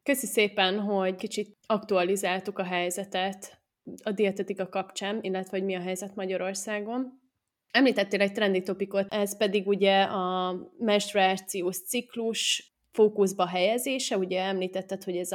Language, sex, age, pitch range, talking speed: Hungarian, female, 20-39, 185-205 Hz, 125 wpm